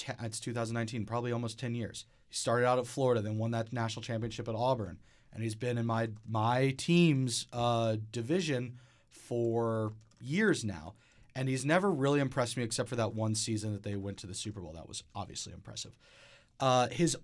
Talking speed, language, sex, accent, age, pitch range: 190 wpm, English, male, American, 30-49, 110-135 Hz